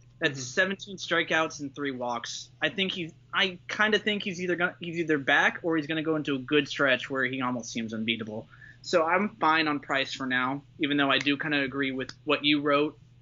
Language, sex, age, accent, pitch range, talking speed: English, male, 20-39, American, 130-170 Hz, 220 wpm